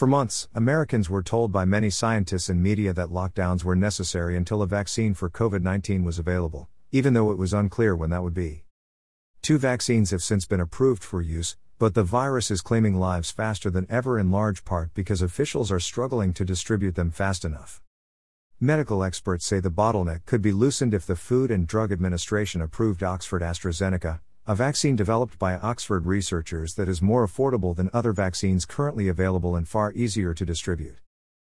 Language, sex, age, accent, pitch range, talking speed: English, male, 50-69, American, 90-110 Hz, 180 wpm